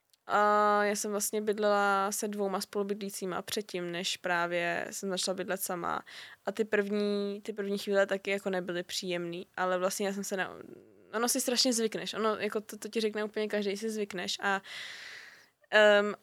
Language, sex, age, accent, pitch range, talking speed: Czech, female, 20-39, native, 200-235 Hz, 175 wpm